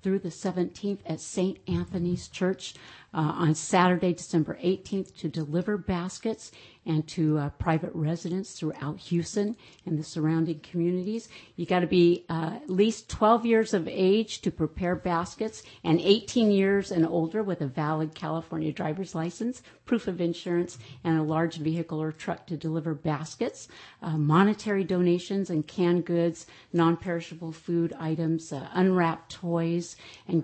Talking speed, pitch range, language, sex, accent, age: 150 wpm, 160-180 Hz, English, female, American, 50-69